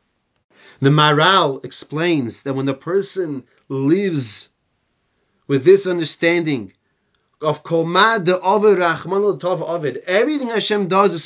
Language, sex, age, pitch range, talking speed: English, male, 30-49, 140-185 Hz, 85 wpm